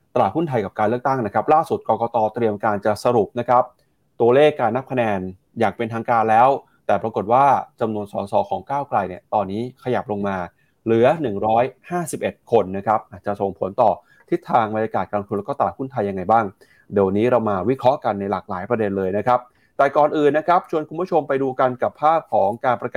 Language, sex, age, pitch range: Thai, male, 20-39, 105-140 Hz